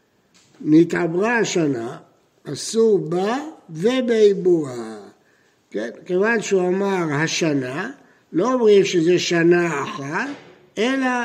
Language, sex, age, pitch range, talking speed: Hebrew, male, 60-79, 165-230 Hz, 85 wpm